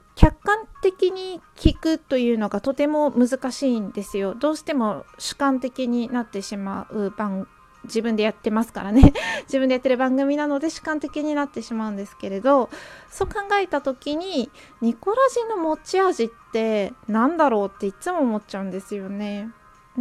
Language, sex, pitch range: Japanese, female, 225-310 Hz